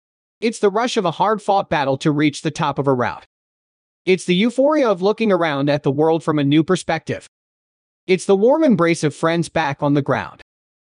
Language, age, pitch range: English, 30-49, 150-195 Hz